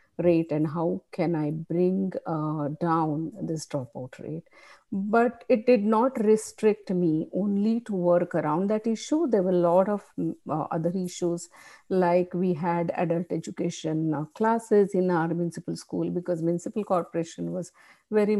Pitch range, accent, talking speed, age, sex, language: 160-195 Hz, Indian, 150 wpm, 50-69, female, English